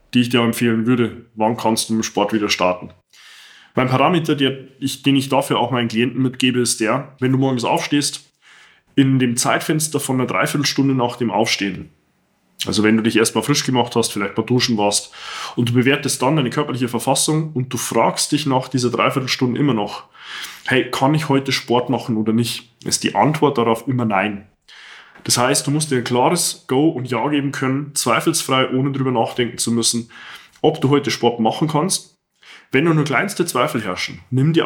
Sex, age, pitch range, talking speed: male, 20-39, 115-140 Hz, 190 wpm